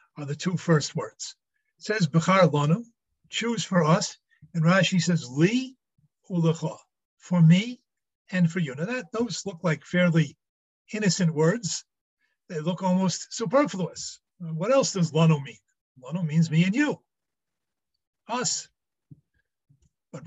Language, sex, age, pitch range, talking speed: English, male, 50-69, 160-215 Hz, 135 wpm